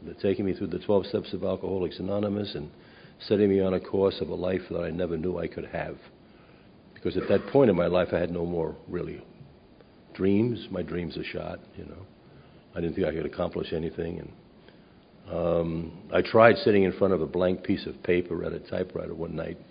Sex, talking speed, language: male, 210 wpm, English